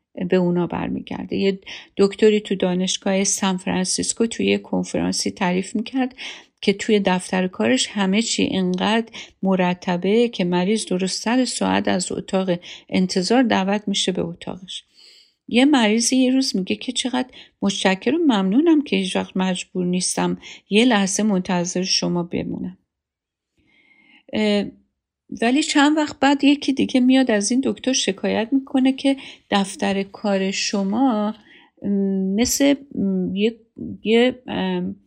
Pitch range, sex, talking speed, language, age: 185-240 Hz, female, 120 wpm, Persian, 50-69